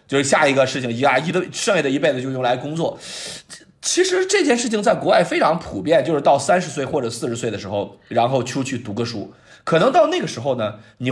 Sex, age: male, 20-39